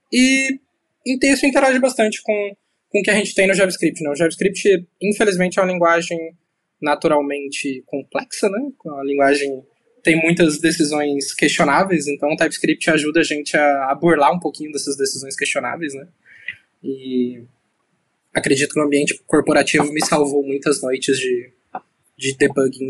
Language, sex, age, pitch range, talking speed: Portuguese, male, 20-39, 140-170 Hz, 150 wpm